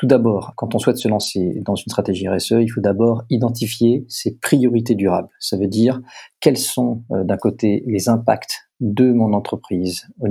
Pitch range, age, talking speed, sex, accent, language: 100-120 Hz, 40-59, 180 wpm, male, French, French